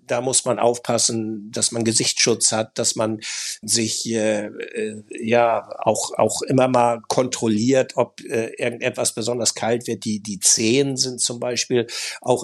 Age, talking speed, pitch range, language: 60-79, 155 wpm, 115-130 Hz, German